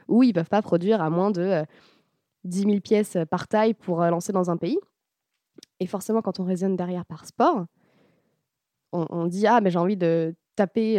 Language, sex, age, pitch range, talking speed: French, female, 20-39, 170-215 Hz, 220 wpm